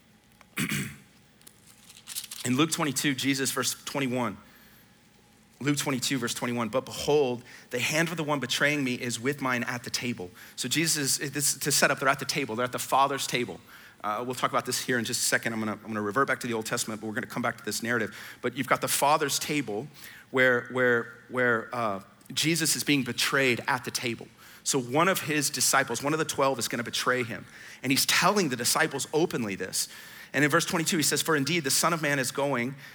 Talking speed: 220 wpm